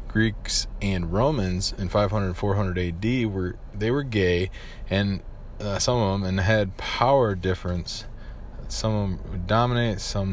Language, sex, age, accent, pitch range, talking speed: English, male, 20-39, American, 90-105 Hz, 155 wpm